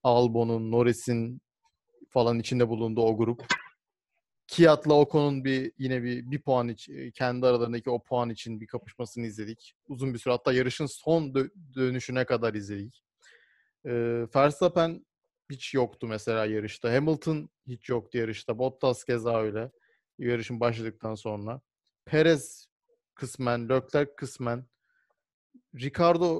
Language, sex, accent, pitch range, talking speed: Turkish, male, native, 120-150 Hz, 125 wpm